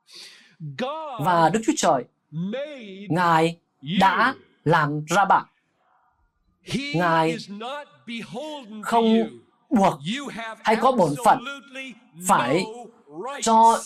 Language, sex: Vietnamese, male